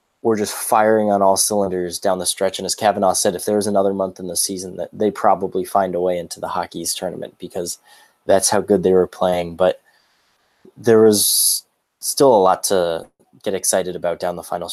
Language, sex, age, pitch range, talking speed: English, male, 20-39, 95-110 Hz, 210 wpm